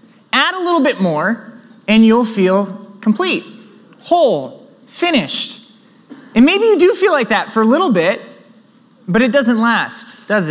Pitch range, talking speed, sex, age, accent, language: 195-245 Hz, 155 wpm, male, 20-39, American, English